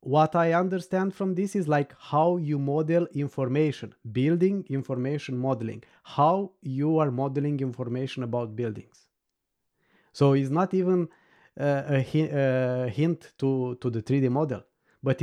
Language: English